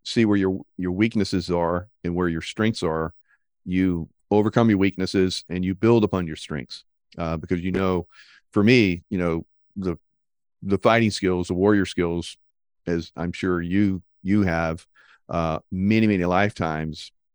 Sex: male